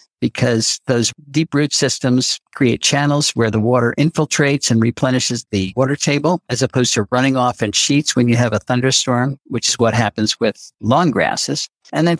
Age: 60-79